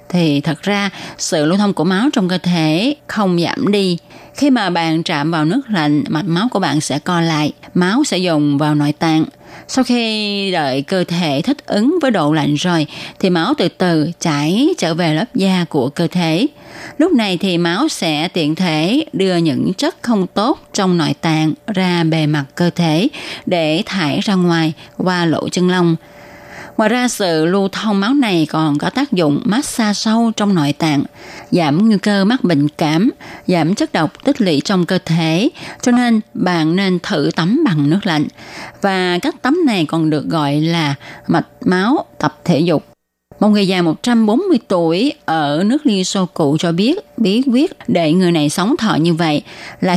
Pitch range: 160-220 Hz